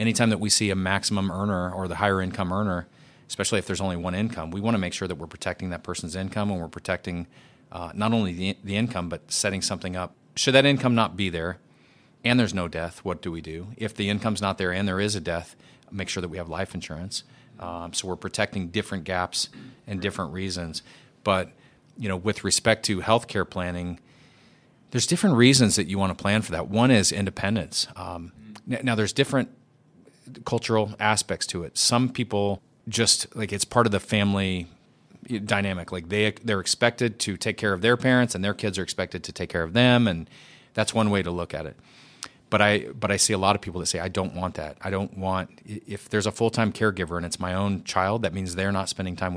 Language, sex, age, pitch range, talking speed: English, male, 30-49, 90-110 Hz, 225 wpm